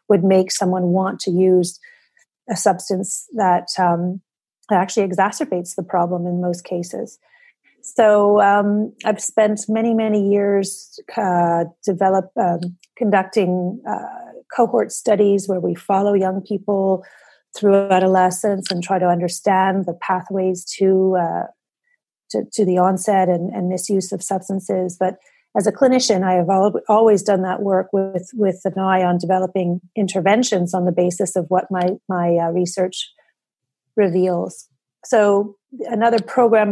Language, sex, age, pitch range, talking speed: English, female, 40-59, 180-210 Hz, 140 wpm